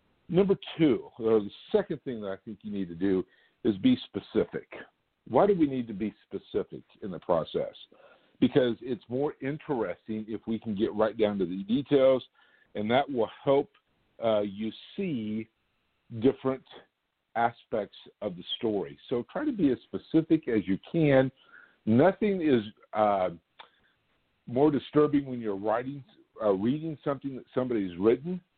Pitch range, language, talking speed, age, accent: 105-135 Hz, English, 155 wpm, 50-69, American